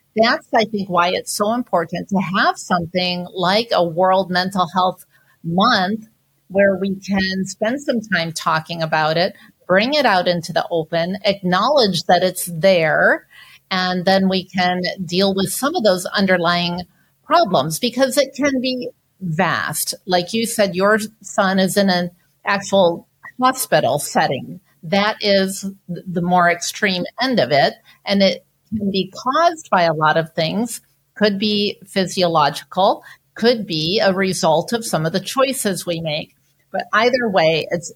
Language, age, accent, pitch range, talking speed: English, 50-69, American, 170-210 Hz, 155 wpm